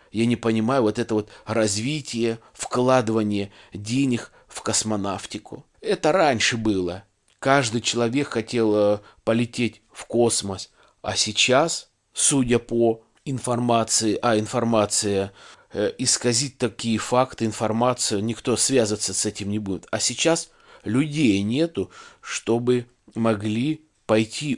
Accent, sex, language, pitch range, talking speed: native, male, Russian, 105-125 Hz, 110 wpm